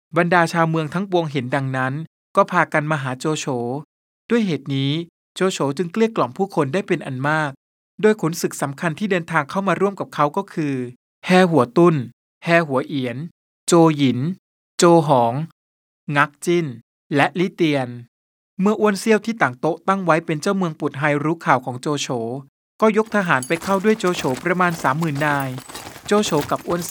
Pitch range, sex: 140-180 Hz, male